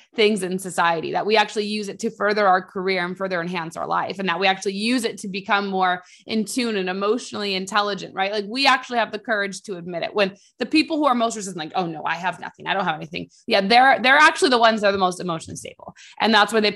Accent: American